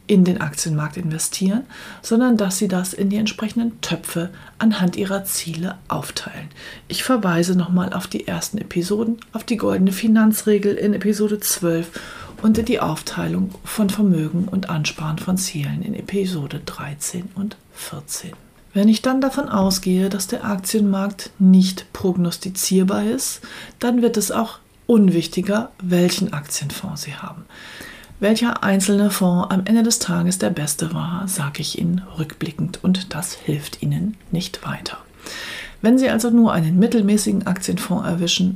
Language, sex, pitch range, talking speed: German, female, 170-210 Hz, 145 wpm